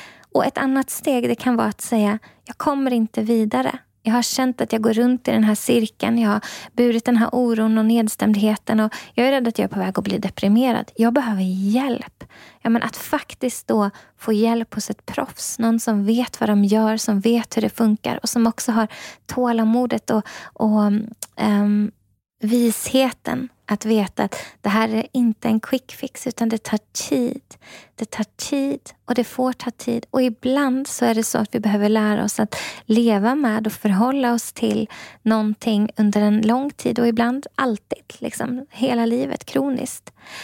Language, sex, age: Swedish, female, 20-39